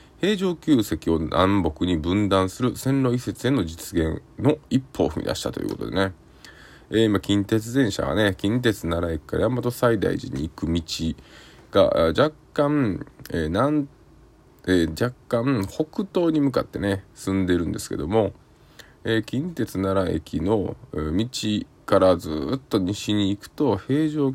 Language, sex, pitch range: Japanese, male, 90-130 Hz